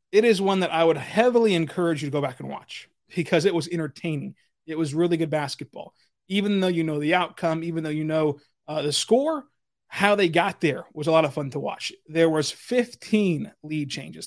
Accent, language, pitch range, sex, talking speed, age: American, English, 155-185 Hz, male, 220 wpm, 30-49